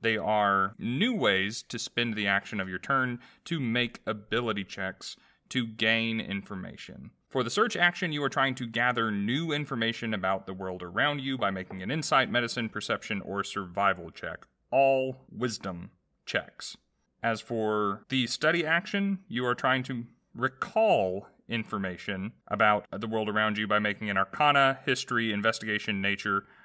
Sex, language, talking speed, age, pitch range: male, English, 155 wpm, 30-49, 100-140 Hz